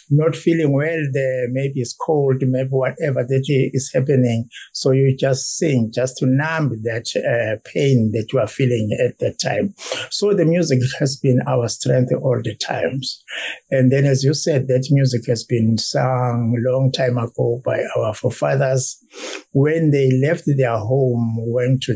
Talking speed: 170 wpm